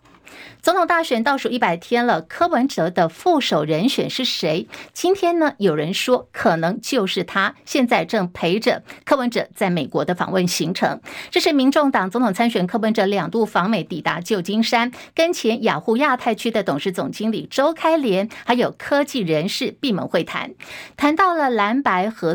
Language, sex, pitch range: Chinese, female, 205-285 Hz